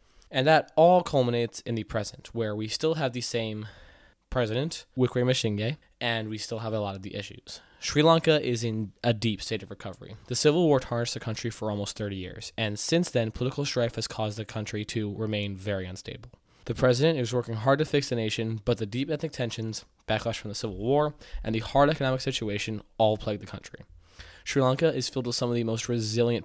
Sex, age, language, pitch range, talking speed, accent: male, 20-39, English, 105-125 Hz, 215 wpm, American